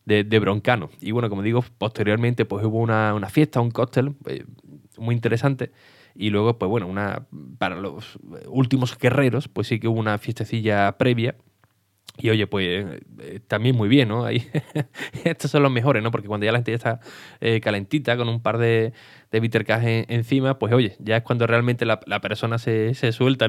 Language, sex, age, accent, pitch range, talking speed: Spanish, male, 20-39, Spanish, 105-125 Hz, 200 wpm